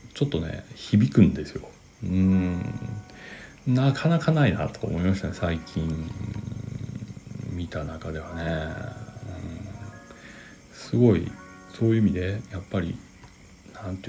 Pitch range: 95-120 Hz